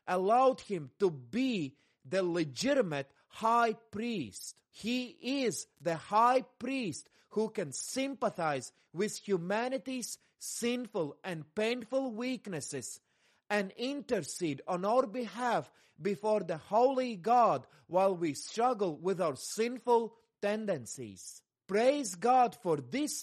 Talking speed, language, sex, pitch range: 110 wpm, English, male, 180-250 Hz